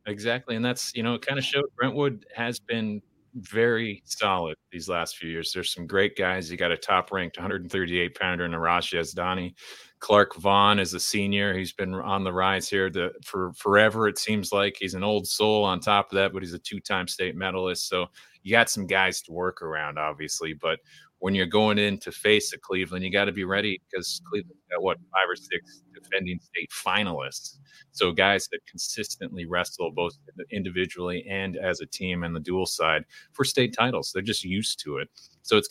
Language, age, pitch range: English, 30-49, 90-105 Hz